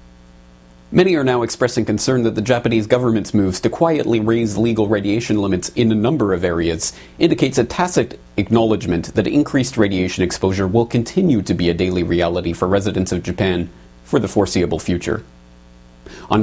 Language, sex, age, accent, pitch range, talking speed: English, male, 30-49, American, 85-115 Hz, 165 wpm